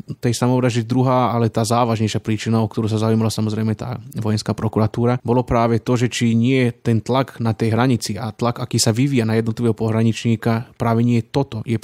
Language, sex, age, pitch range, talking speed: Slovak, male, 20-39, 110-120 Hz, 200 wpm